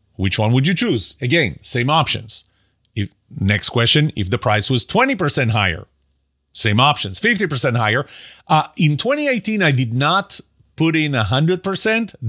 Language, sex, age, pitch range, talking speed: English, male, 40-59, 105-160 Hz, 140 wpm